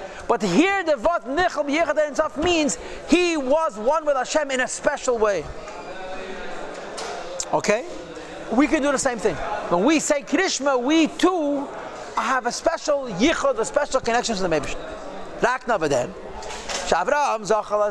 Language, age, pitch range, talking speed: English, 40-59, 210-290 Hz, 145 wpm